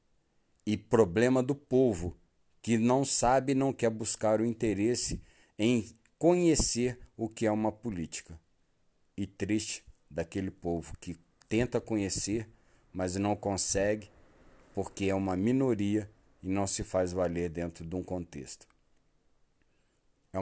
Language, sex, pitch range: Portuguese, male, 85-110 Hz